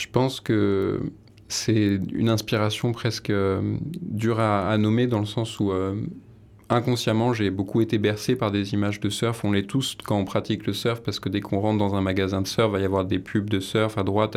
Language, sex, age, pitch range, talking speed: French, male, 20-39, 95-110 Hz, 225 wpm